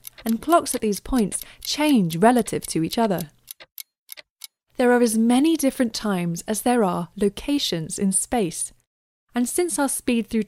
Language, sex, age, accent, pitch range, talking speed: English, female, 20-39, British, 175-255 Hz, 155 wpm